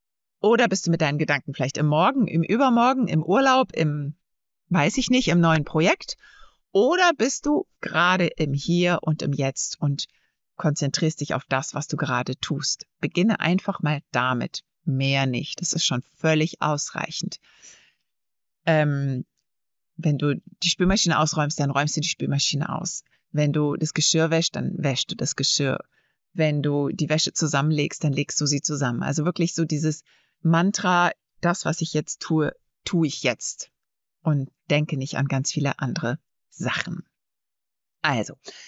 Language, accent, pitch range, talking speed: German, German, 150-185 Hz, 160 wpm